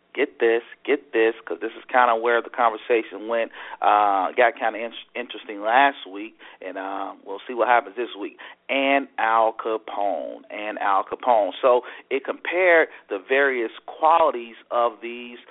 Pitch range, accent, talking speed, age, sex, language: 115-135 Hz, American, 165 wpm, 40-59, male, English